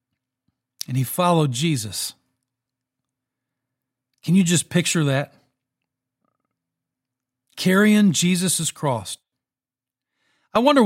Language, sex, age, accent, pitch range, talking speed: English, male, 40-59, American, 130-185 Hz, 75 wpm